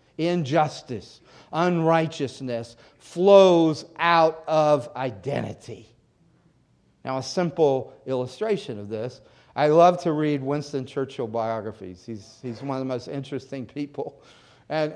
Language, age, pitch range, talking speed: English, 40-59, 135-180 Hz, 110 wpm